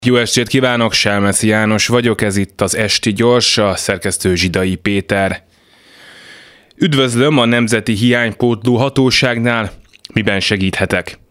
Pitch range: 95-120 Hz